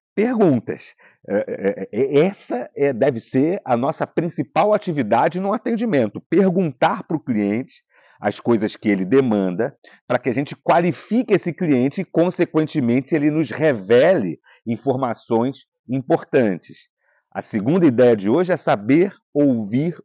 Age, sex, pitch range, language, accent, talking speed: 40-59, male, 125-180 Hz, Portuguese, Brazilian, 125 wpm